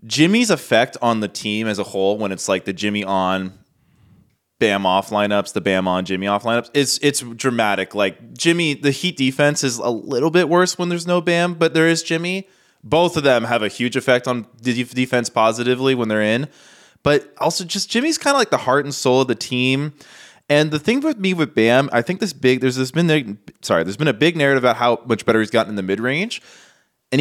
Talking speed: 225 wpm